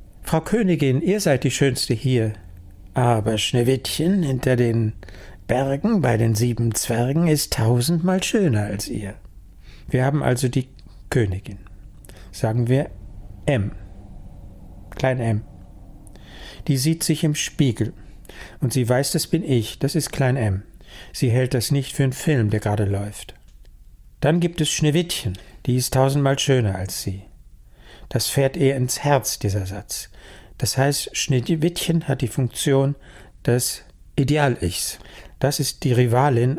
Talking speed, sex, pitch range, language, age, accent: 140 wpm, male, 105-145 Hz, German, 60-79, German